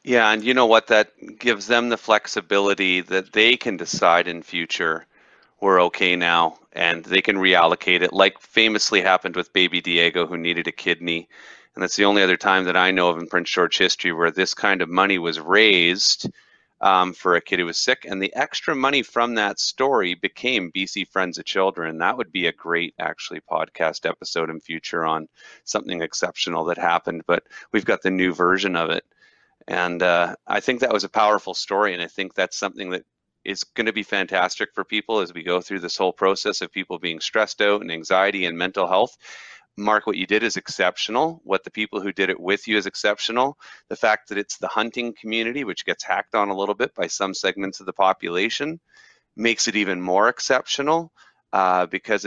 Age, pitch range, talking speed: 30-49, 90-105 Hz, 205 wpm